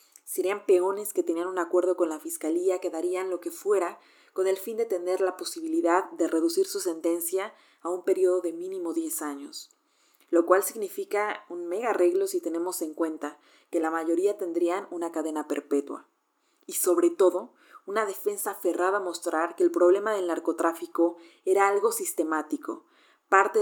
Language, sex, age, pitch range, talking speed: Spanish, female, 30-49, 170-205 Hz, 170 wpm